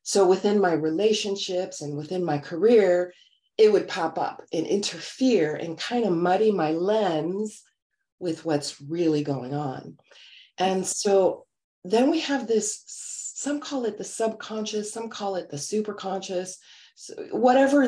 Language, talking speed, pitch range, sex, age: English, 145 wpm, 155-210 Hz, female, 30-49